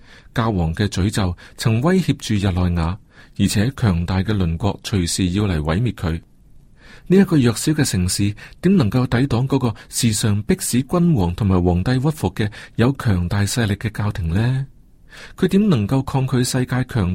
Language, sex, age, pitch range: Chinese, male, 40-59, 95-130 Hz